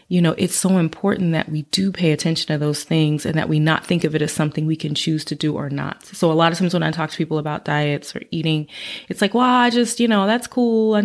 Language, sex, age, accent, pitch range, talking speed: English, female, 30-49, American, 155-180 Hz, 290 wpm